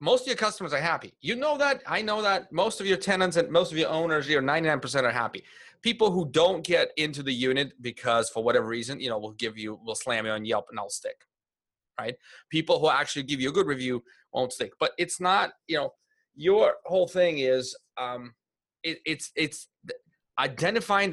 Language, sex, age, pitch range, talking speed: English, male, 30-49, 125-175 Hz, 210 wpm